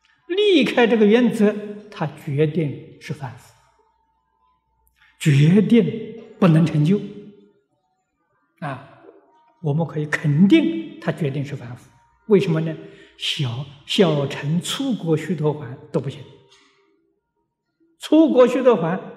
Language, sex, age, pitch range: Chinese, male, 60-79, 140-210 Hz